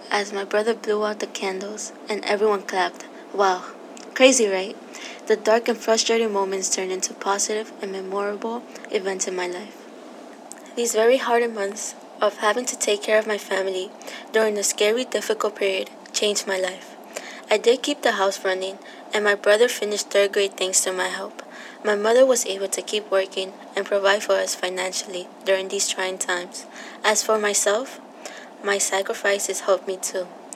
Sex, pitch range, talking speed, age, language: female, 195-225 Hz, 170 wpm, 20-39, English